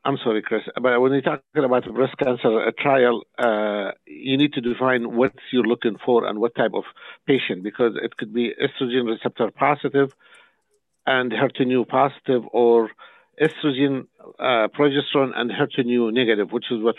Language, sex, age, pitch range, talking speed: English, male, 50-69, 110-130 Hz, 160 wpm